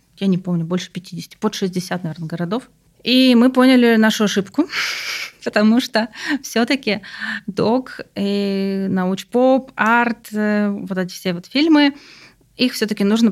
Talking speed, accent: 125 wpm, native